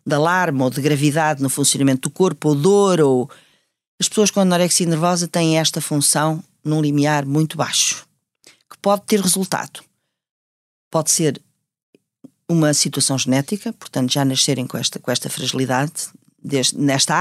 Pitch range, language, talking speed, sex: 155-215 Hz, Portuguese, 145 wpm, female